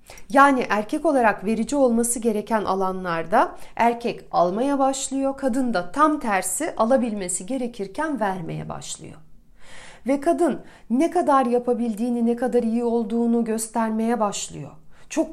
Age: 40-59